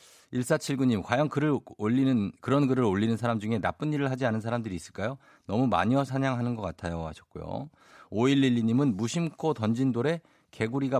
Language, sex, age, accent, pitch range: Korean, male, 50-69, native, 100-150 Hz